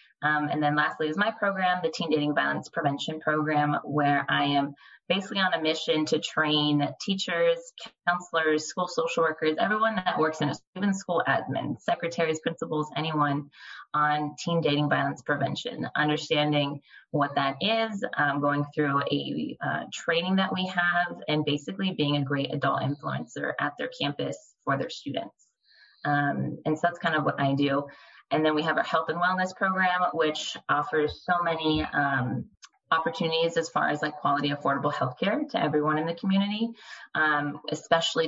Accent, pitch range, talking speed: American, 145-170 Hz, 170 wpm